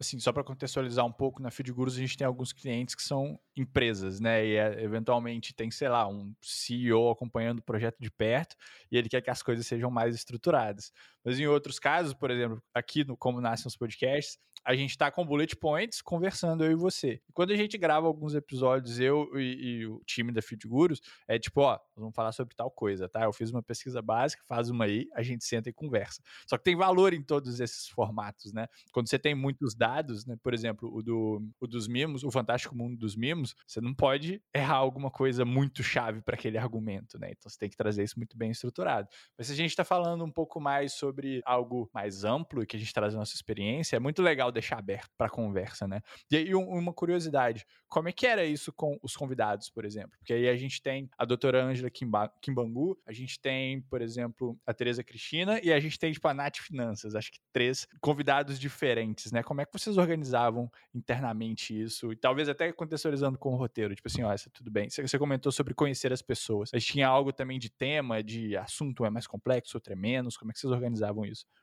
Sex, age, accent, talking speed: male, 20-39, Brazilian, 225 wpm